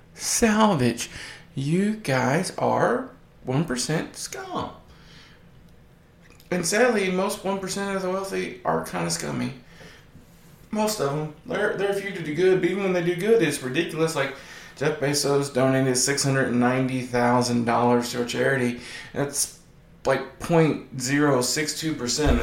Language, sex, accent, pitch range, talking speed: English, male, American, 125-205 Hz, 120 wpm